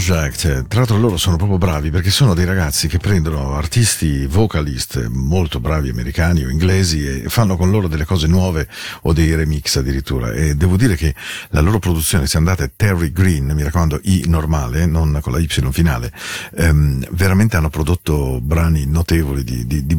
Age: 50-69